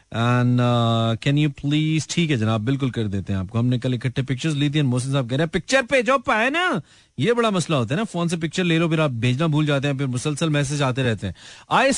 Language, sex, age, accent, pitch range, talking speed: Hindi, male, 40-59, native, 135-175 Hz, 260 wpm